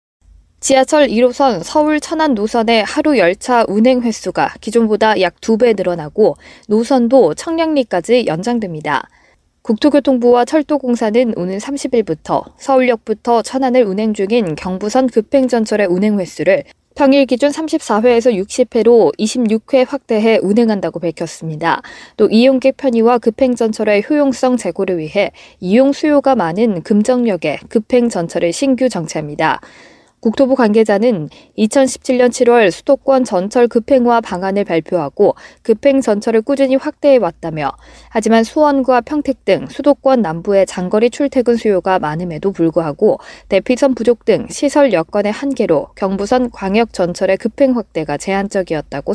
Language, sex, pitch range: Korean, female, 195-260 Hz